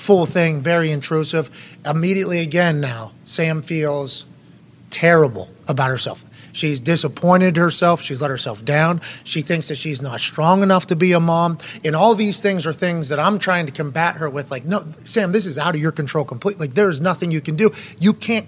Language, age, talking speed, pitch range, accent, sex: English, 30-49, 200 wpm, 150-180 Hz, American, male